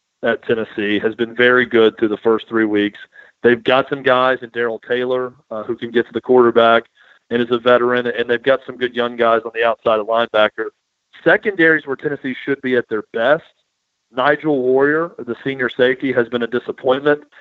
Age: 40-59